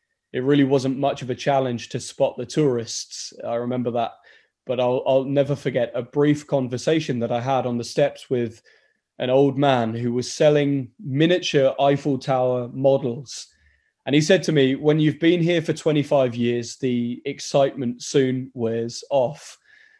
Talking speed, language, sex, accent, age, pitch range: 170 wpm, English, male, British, 20-39, 130-155 Hz